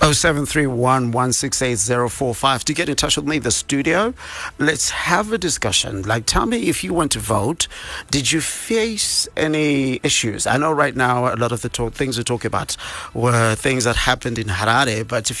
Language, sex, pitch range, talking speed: English, male, 115-140 Hz, 185 wpm